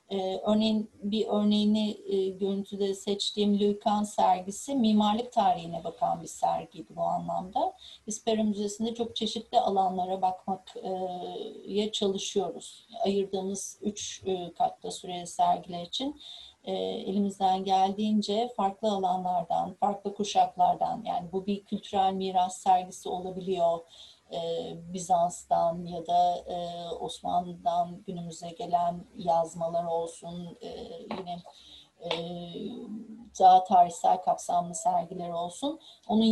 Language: Turkish